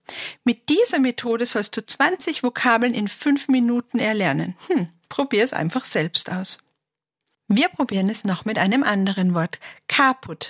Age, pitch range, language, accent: 50-69, 185-270 Hz, German, German